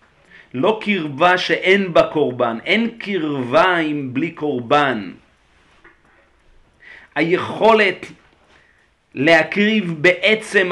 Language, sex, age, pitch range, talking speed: Hebrew, male, 40-59, 145-190 Hz, 75 wpm